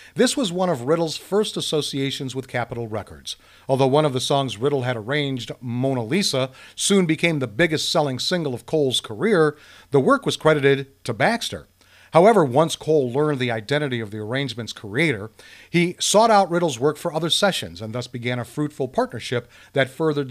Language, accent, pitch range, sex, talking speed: English, American, 125-160 Hz, male, 175 wpm